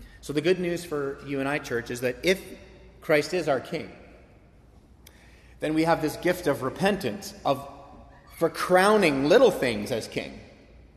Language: English